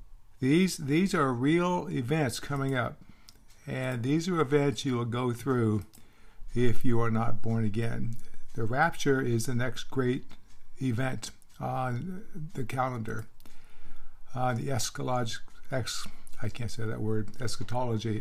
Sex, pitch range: male, 115-140 Hz